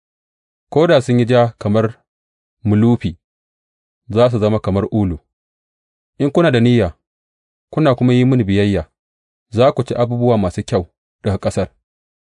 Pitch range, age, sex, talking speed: 75-120 Hz, 30-49, male, 115 wpm